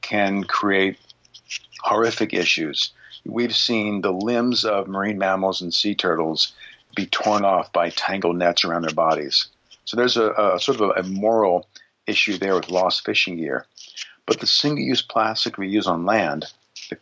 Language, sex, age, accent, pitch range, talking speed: English, male, 50-69, American, 95-115 Hz, 160 wpm